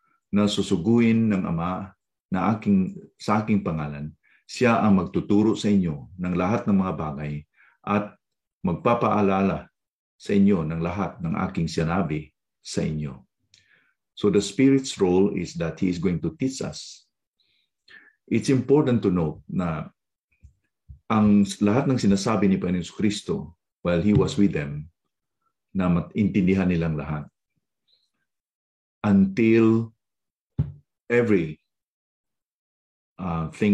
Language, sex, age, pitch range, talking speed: English, male, 50-69, 85-105 Hz, 115 wpm